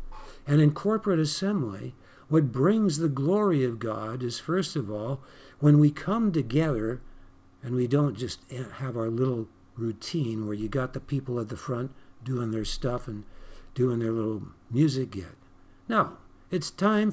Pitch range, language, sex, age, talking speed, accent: 115-155 Hz, English, male, 60-79, 160 wpm, American